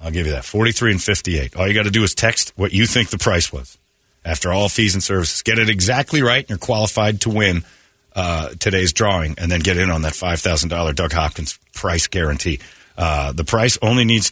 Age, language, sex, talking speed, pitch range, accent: 40-59, English, male, 220 wpm, 90-115 Hz, American